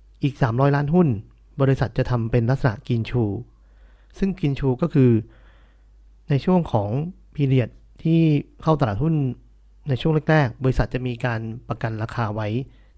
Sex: male